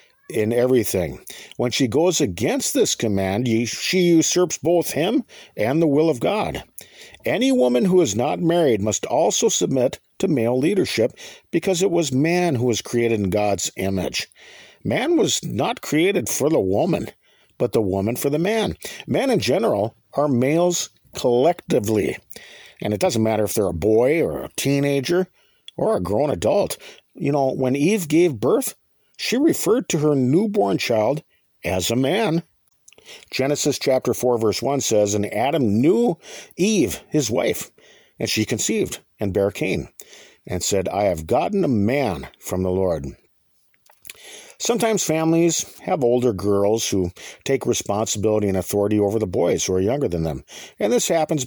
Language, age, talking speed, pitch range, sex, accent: English, 50-69, 160 wpm, 110-165 Hz, male, American